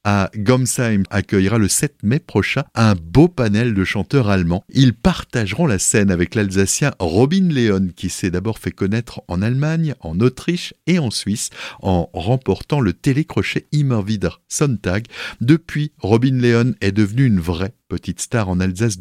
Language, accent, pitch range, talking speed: French, French, 95-120 Hz, 160 wpm